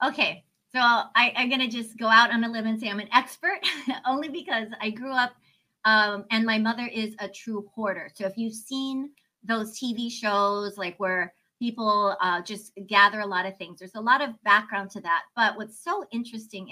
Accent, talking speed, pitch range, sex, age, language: American, 205 wpm, 195-230 Hz, female, 30-49, English